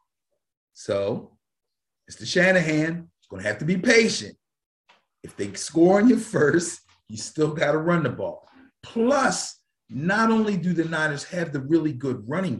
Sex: male